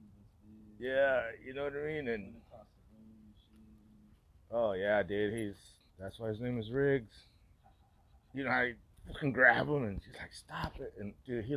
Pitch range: 100-135 Hz